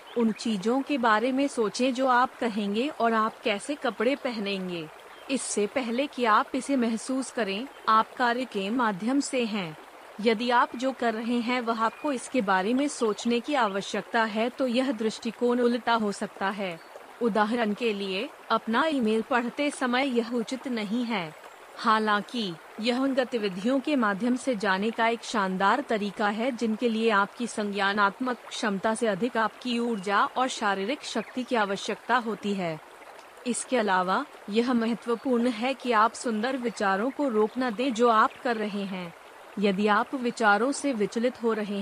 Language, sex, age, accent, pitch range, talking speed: Hindi, female, 30-49, native, 210-255 Hz, 160 wpm